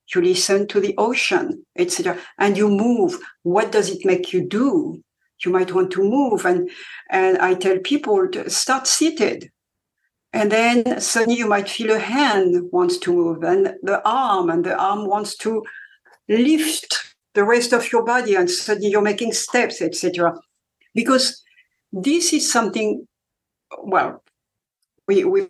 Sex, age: female, 60-79